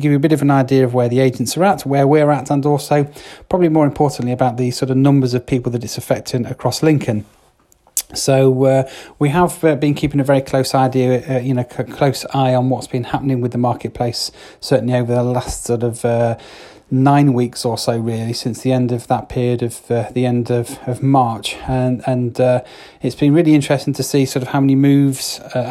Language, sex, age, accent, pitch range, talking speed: English, male, 30-49, British, 125-135 Hz, 225 wpm